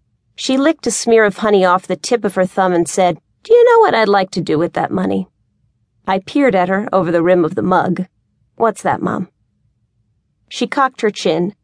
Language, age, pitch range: English, 40-59, 170-210 Hz